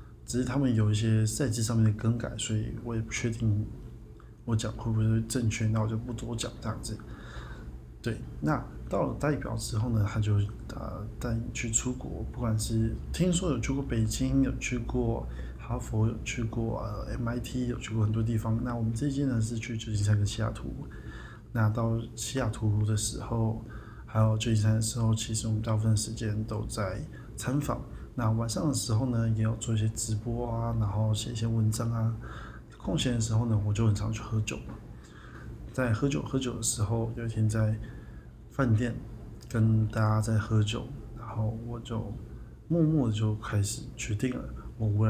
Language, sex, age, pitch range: Chinese, male, 20-39, 110-120 Hz